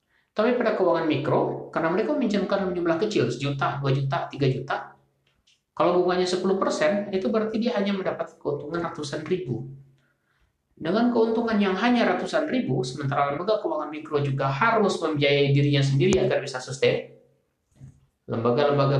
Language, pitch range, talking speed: Indonesian, 130-195 Hz, 140 wpm